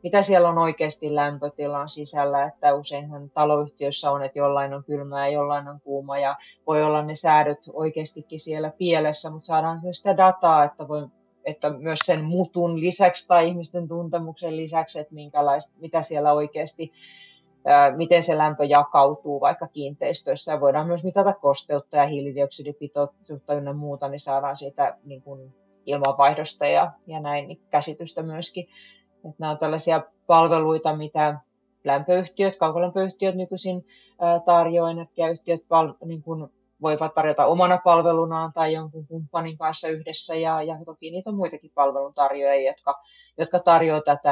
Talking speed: 140 wpm